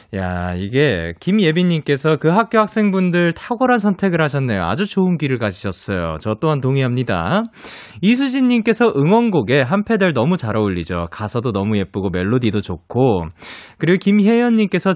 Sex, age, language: male, 20-39, Korean